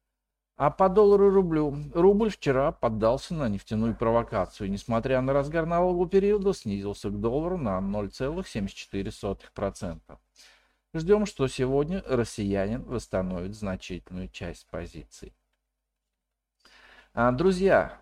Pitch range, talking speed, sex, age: 95-155 Hz, 95 wpm, male, 50-69